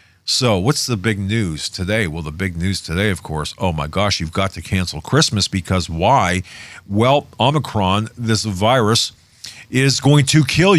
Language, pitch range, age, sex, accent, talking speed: English, 85-110 Hz, 50-69, male, American, 170 wpm